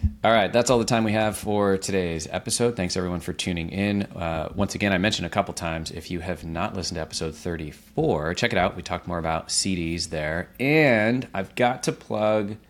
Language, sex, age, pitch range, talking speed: English, male, 30-49, 80-100 Hz, 215 wpm